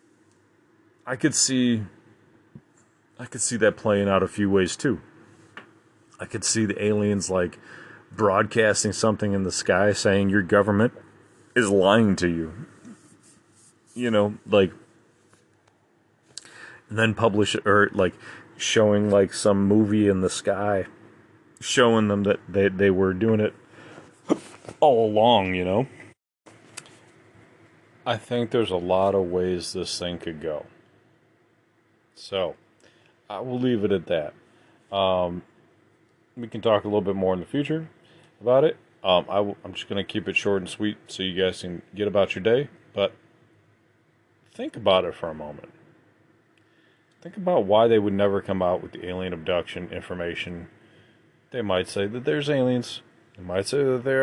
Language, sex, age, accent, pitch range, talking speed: English, male, 30-49, American, 95-120 Hz, 155 wpm